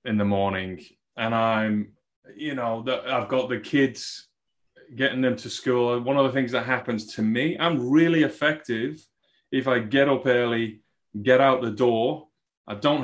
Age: 30-49